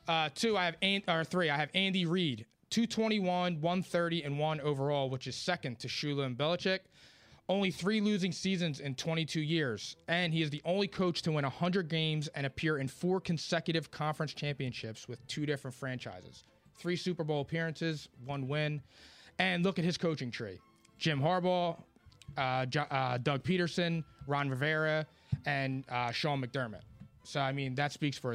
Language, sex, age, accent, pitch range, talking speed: English, male, 20-39, American, 135-175 Hz, 175 wpm